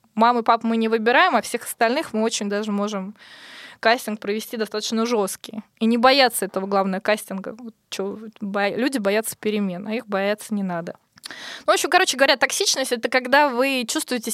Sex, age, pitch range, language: female, 20-39, 205-240 Hz, Russian